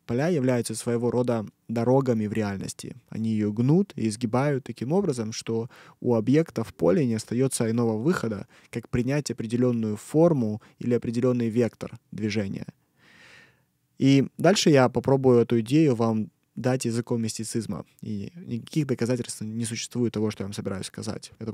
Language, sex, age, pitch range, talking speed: Russian, male, 20-39, 110-125 Hz, 150 wpm